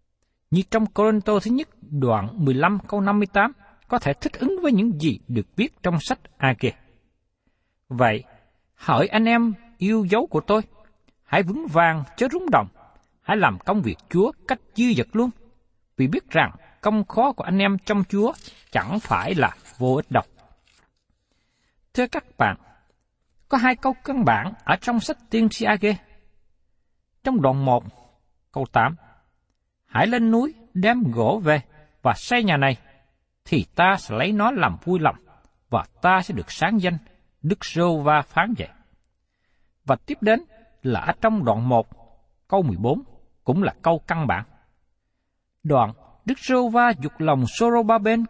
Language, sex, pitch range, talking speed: Vietnamese, male, 150-225 Hz, 160 wpm